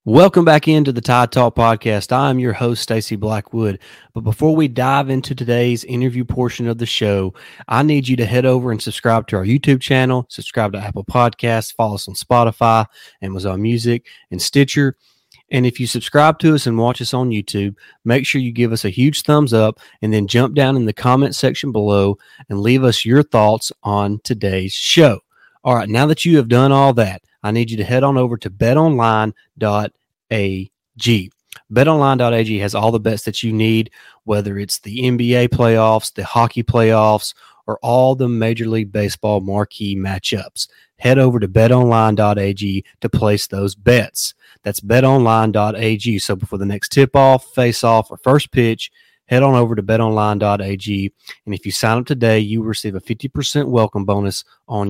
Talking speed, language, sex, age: 180 wpm, English, male, 30-49